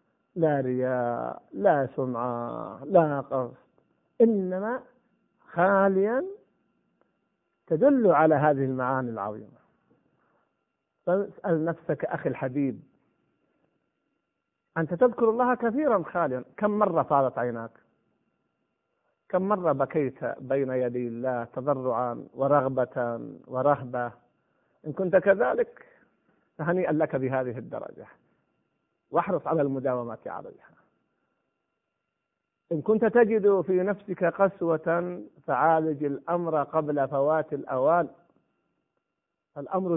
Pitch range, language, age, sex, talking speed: 140-205 Hz, Arabic, 50-69, male, 85 wpm